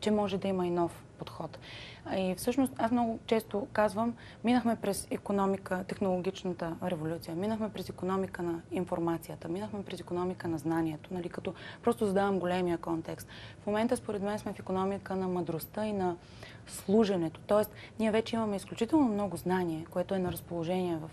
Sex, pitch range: female, 175-210 Hz